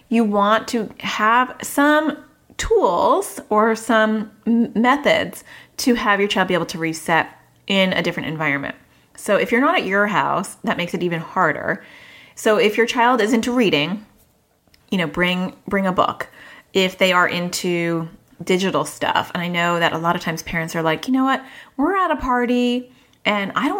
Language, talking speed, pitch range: English, 185 wpm, 170-235 Hz